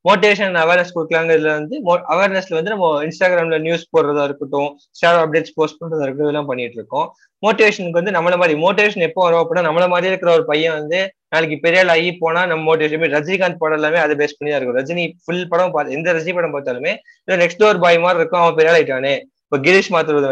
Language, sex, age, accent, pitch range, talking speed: Tamil, male, 20-39, native, 155-190 Hz, 200 wpm